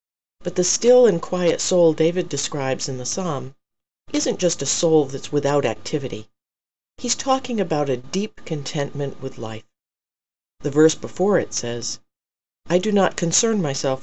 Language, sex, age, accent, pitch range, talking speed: English, female, 40-59, American, 130-185 Hz, 155 wpm